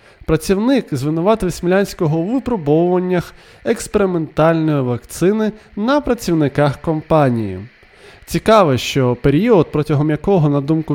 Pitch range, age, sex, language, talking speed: 145-200 Hz, 20-39, male, Ukrainian, 95 wpm